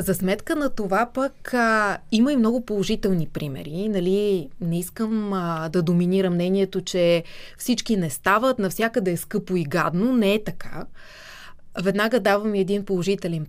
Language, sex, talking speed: Bulgarian, female, 155 wpm